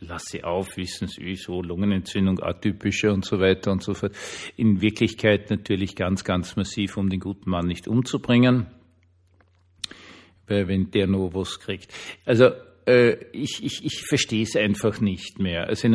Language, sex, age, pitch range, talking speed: German, male, 50-69, 95-115 Hz, 165 wpm